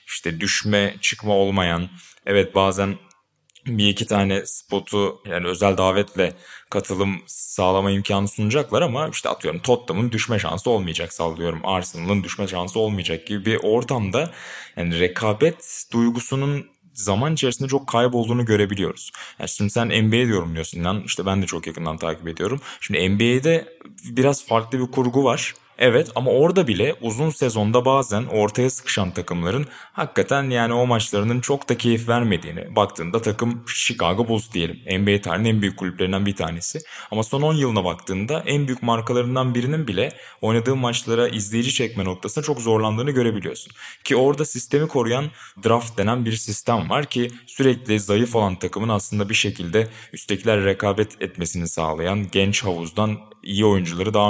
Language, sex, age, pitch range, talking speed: Turkish, male, 20-39, 95-120 Hz, 145 wpm